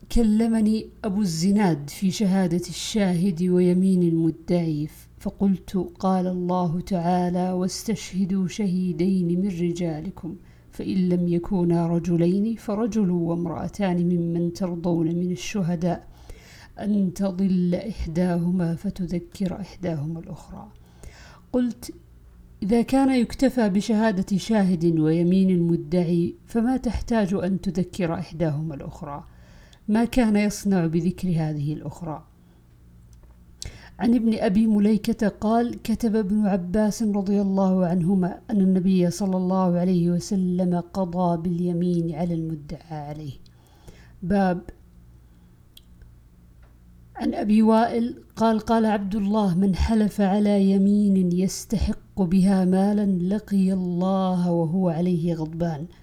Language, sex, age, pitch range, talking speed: Arabic, female, 50-69, 170-200 Hz, 100 wpm